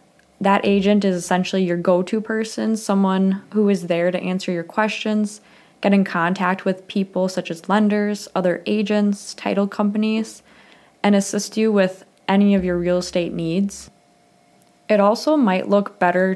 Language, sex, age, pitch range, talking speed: English, female, 20-39, 180-210 Hz, 155 wpm